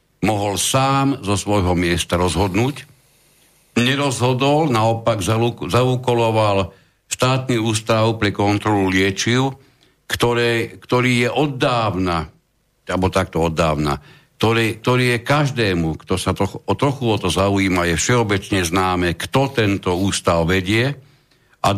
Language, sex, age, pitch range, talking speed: Slovak, male, 60-79, 95-125 Hz, 115 wpm